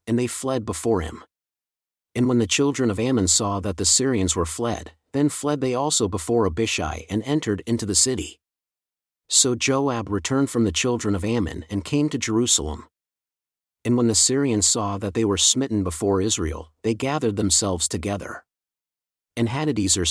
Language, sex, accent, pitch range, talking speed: English, male, American, 100-130 Hz, 170 wpm